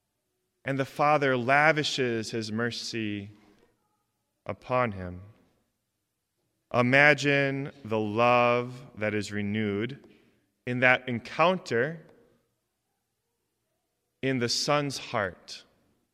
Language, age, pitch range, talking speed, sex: English, 20-39, 105-135 Hz, 80 wpm, male